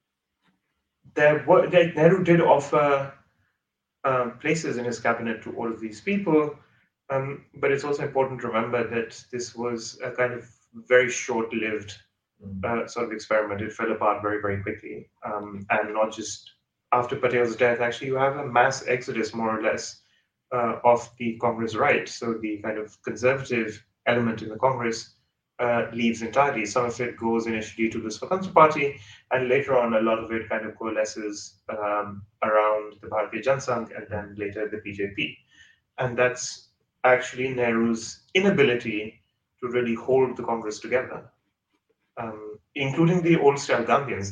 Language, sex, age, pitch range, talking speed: English, male, 30-49, 110-125 Hz, 160 wpm